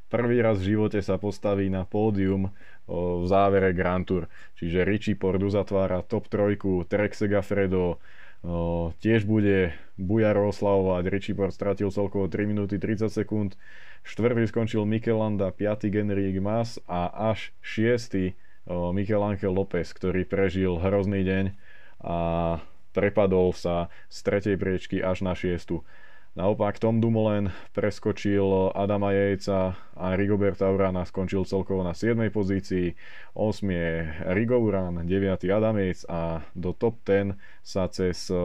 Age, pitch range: 20-39, 90-105 Hz